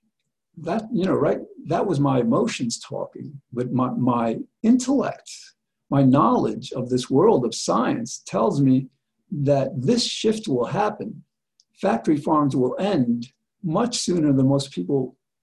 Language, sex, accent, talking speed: English, male, American, 140 wpm